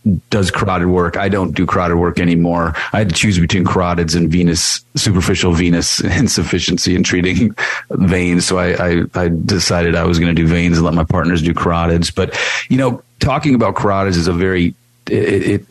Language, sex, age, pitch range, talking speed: English, male, 40-59, 85-100 Hz, 190 wpm